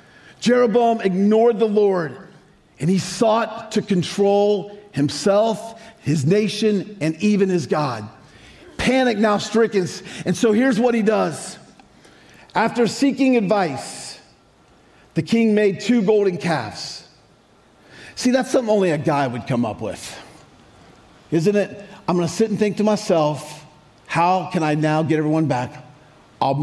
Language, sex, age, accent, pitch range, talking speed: English, male, 50-69, American, 170-220 Hz, 140 wpm